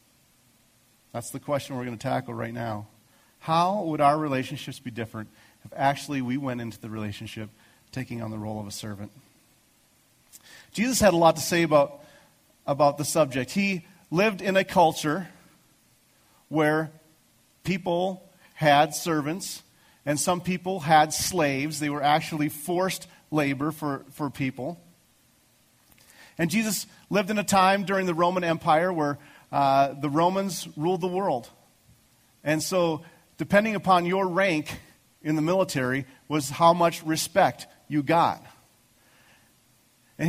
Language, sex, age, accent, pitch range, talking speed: English, male, 40-59, American, 130-175 Hz, 140 wpm